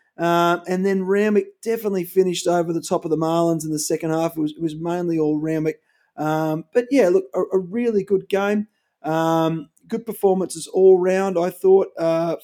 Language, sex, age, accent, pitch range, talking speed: English, male, 30-49, Australian, 155-185 Hz, 195 wpm